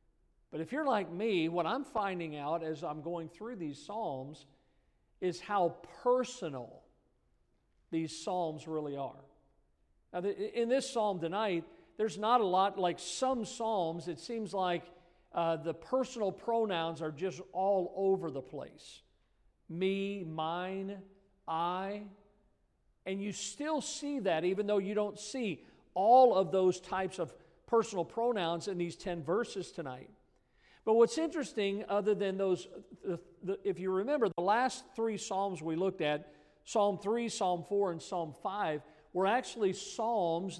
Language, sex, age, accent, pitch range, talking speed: English, male, 50-69, American, 170-210 Hz, 145 wpm